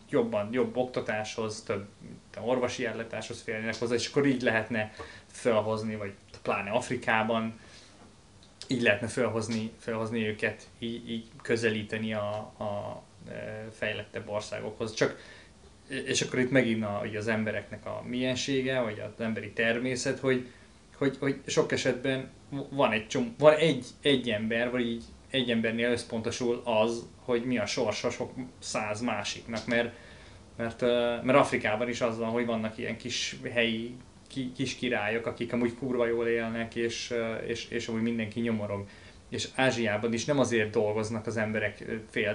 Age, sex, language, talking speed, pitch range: 20-39, male, Hungarian, 145 wpm, 110-125 Hz